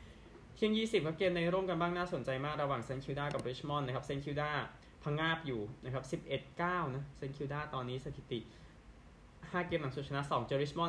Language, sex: Thai, male